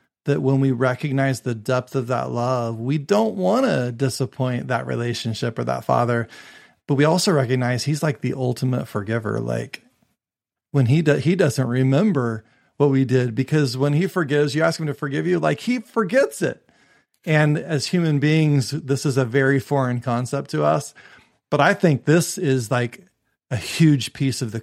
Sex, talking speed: male, 180 wpm